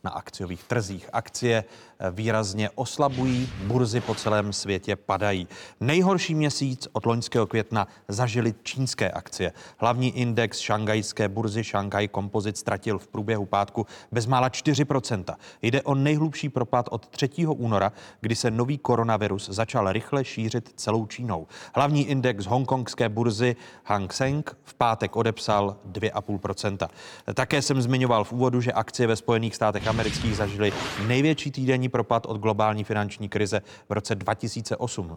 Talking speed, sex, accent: 135 wpm, male, native